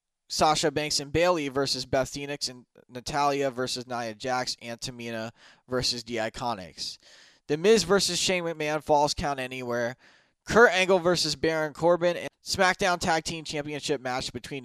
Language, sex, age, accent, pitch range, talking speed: English, male, 20-39, American, 125-160 Hz, 150 wpm